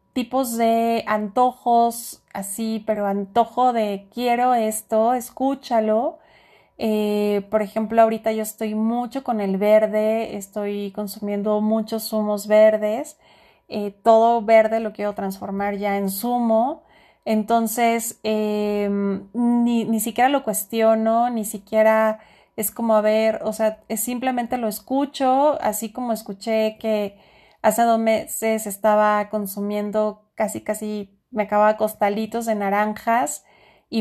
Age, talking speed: 30-49, 120 wpm